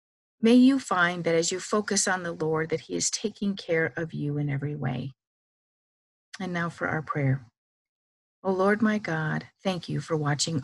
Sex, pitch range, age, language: female, 150-205 Hz, 40-59, English